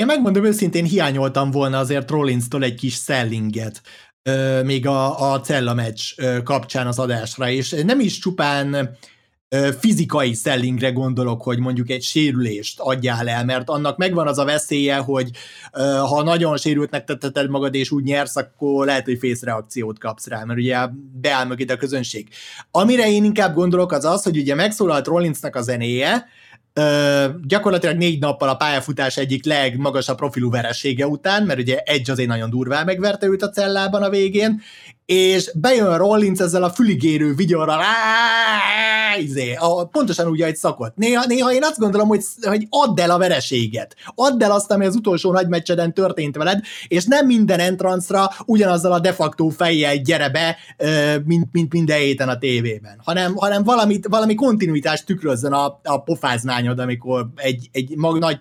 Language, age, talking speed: Hungarian, 30-49, 170 wpm